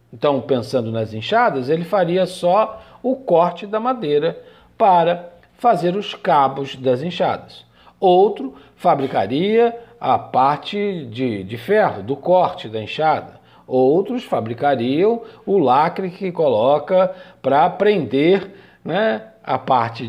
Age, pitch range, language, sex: 50-69, 135-215 Hz, Portuguese, male